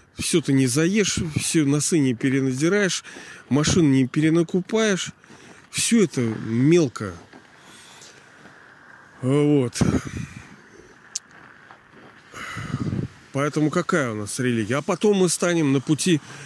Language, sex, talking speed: Russian, male, 95 wpm